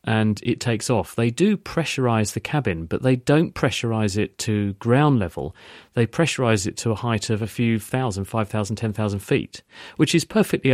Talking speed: 195 wpm